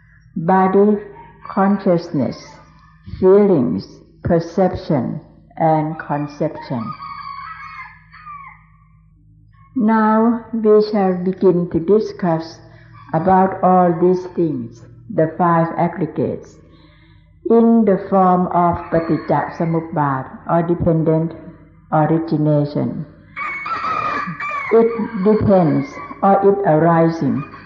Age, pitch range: 60-79, 160-205 Hz